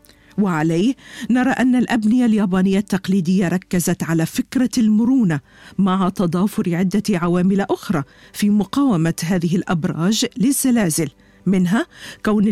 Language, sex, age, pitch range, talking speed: Arabic, female, 50-69, 180-255 Hz, 105 wpm